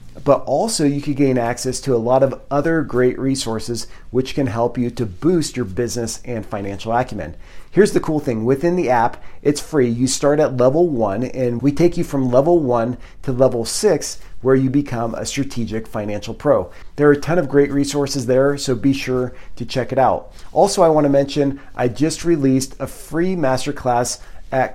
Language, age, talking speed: English, 40-59, 200 wpm